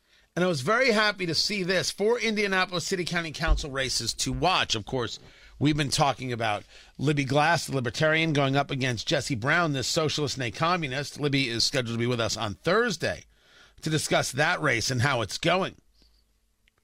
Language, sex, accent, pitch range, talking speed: English, male, American, 135-225 Hz, 185 wpm